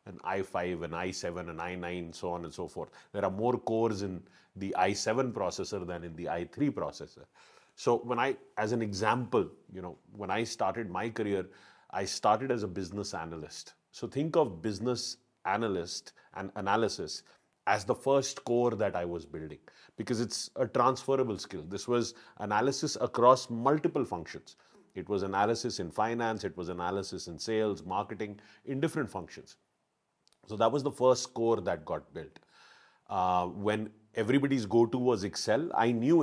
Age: 30-49